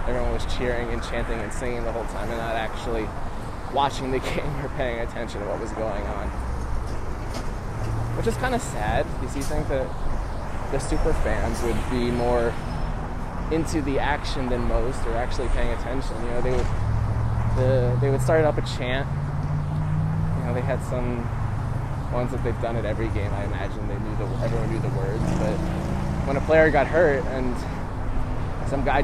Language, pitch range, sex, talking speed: English, 105-125 Hz, male, 185 wpm